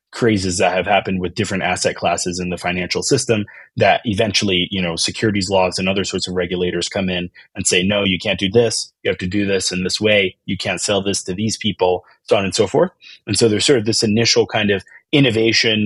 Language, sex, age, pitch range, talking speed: English, male, 30-49, 95-110 Hz, 235 wpm